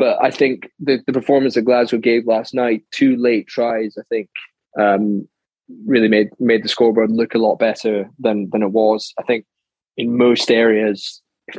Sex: male